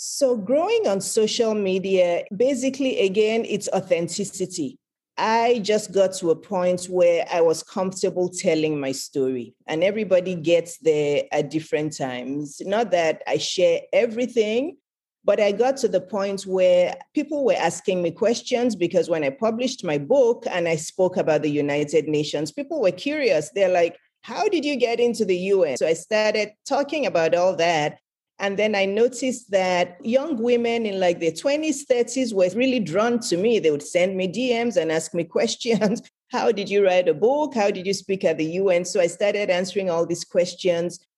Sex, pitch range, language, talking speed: female, 170-230 Hz, English, 180 wpm